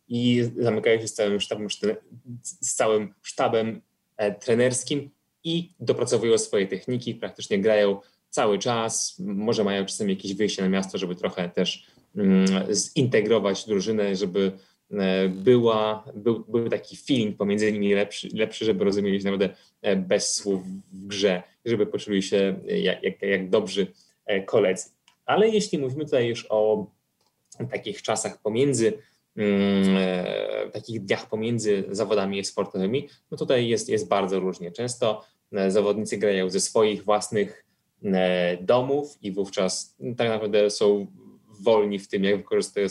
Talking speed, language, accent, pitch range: 125 wpm, Polish, native, 95-120 Hz